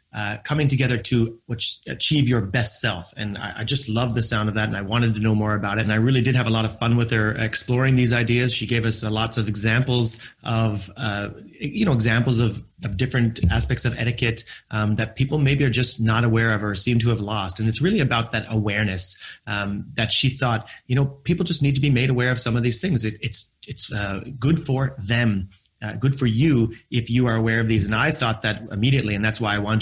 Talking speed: 245 wpm